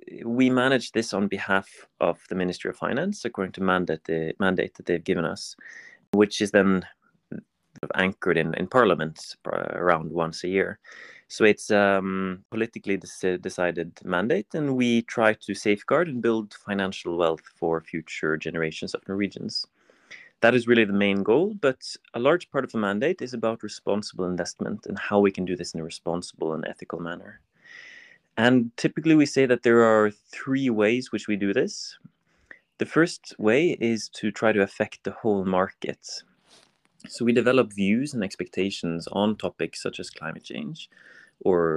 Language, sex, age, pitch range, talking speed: English, male, 30-49, 90-115 Hz, 170 wpm